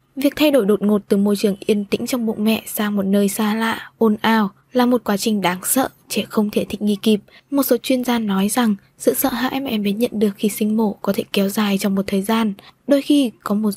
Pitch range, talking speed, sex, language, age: 205-245 Hz, 265 wpm, female, Vietnamese, 20-39